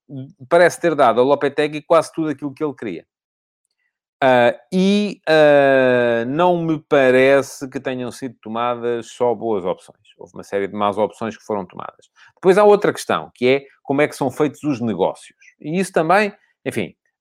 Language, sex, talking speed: Portuguese, male, 165 wpm